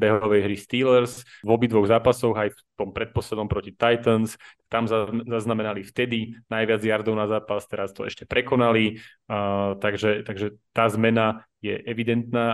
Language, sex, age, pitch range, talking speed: Slovak, male, 30-49, 105-115 Hz, 145 wpm